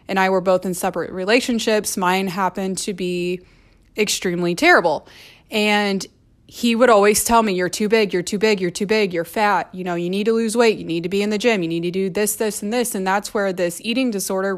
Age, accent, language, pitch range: 20-39, American, English, 185-220 Hz